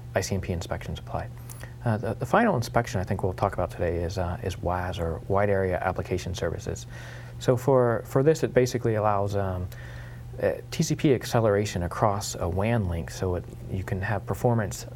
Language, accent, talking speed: English, American, 175 wpm